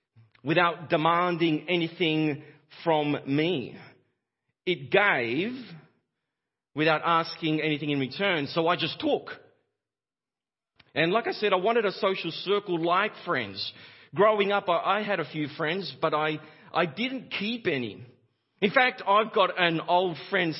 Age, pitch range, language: 40-59, 125-175 Hz, English